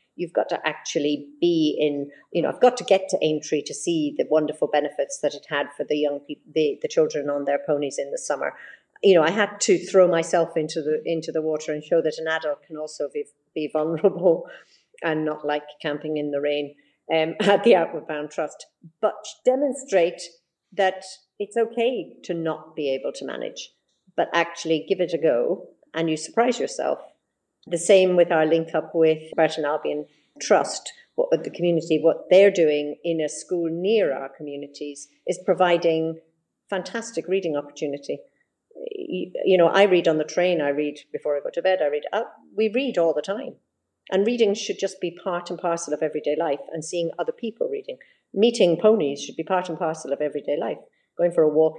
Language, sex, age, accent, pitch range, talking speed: English, female, 50-69, British, 150-190 Hz, 195 wpm